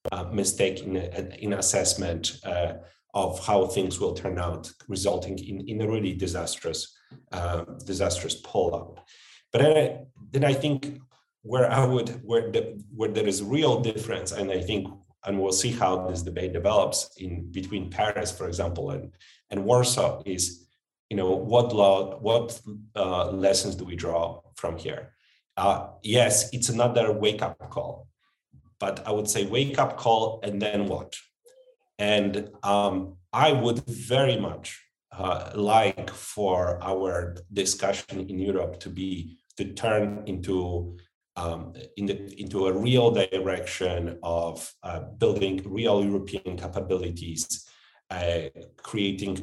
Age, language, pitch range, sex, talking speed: 40-59, English, 90-110 Hz, male, 145 wpm